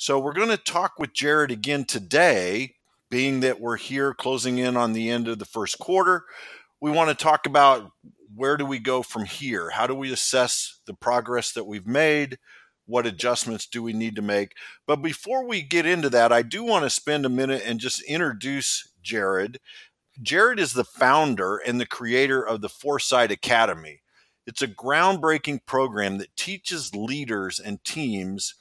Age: 50-69